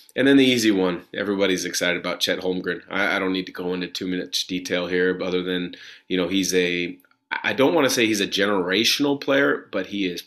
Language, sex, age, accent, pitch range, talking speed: English, male, 30-49, American, 90-100 Hz, 235 wpm